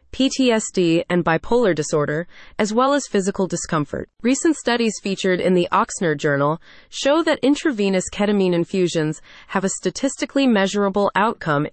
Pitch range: 170-230 Hz